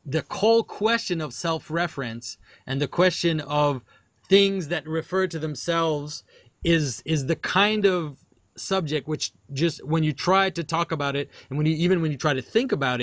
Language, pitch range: English, 140-175 Hz